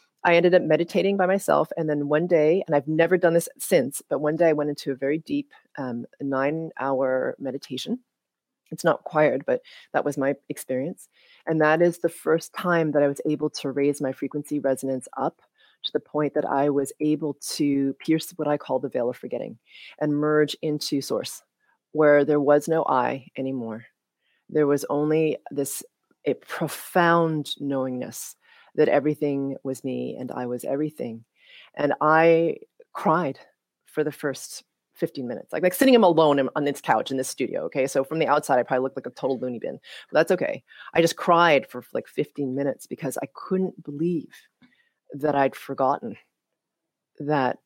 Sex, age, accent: female, 30-49, American